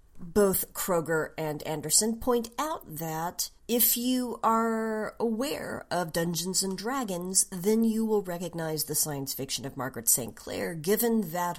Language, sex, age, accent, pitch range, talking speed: English, female, 50-69, American, 155-225 Hz, 145 wpm